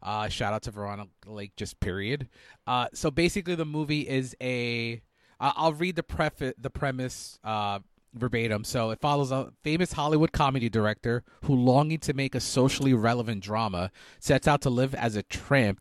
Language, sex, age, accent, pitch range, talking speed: English, male, 30-49, American, 105-145 Hz, 165 wpm